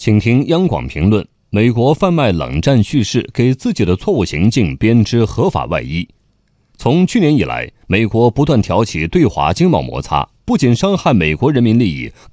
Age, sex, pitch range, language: 30-49, male, 105-150 Hz, Chinese